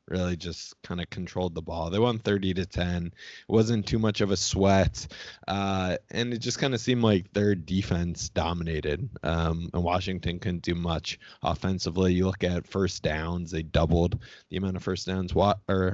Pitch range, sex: 85-100 Hz, male